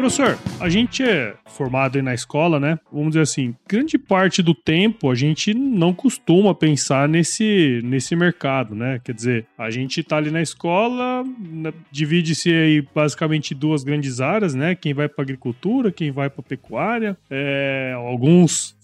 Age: 20-39